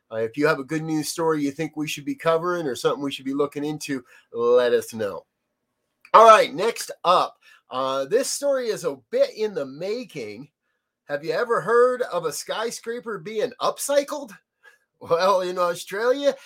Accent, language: American, English